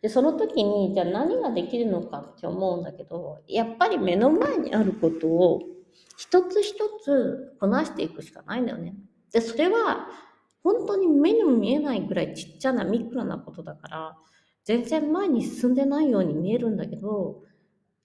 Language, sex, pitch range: Japanese, female, 180-260 Hz